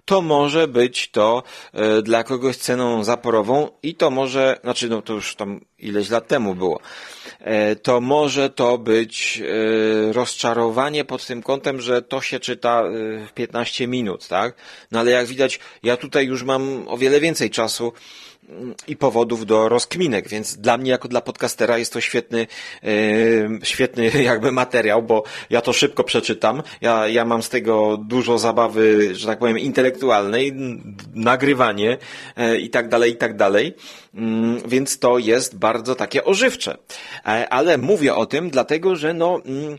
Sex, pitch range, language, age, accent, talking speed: male, 115-145 Hz, Polish, 30-49, native, 150 wpm